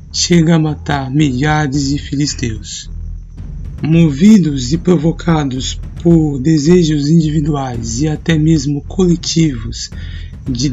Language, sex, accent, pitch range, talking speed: Portuguese, male, Brazilian, 115-165 Hz, 95 wpm